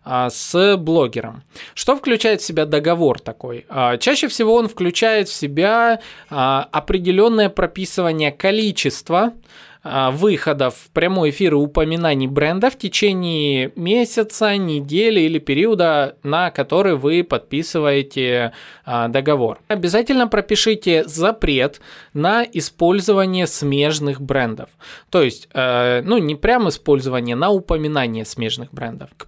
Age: 20-39